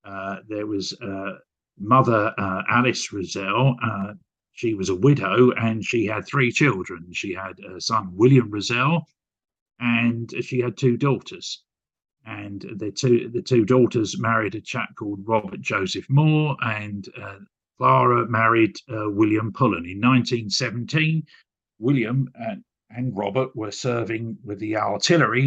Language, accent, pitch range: English, British, 105-130 Hz